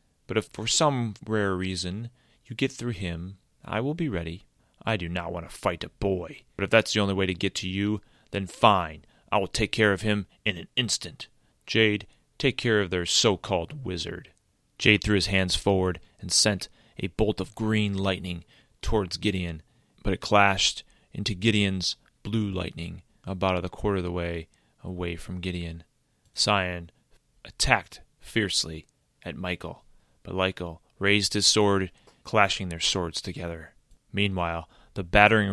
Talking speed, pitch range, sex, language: 165 wpm, 90-105 Hz, male, English